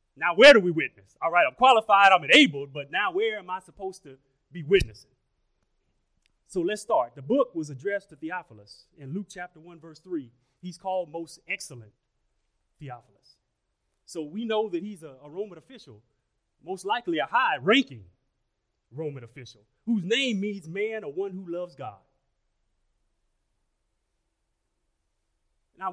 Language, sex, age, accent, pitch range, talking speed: English, male, 30-49, American, 130-205 Hz, 155 wpm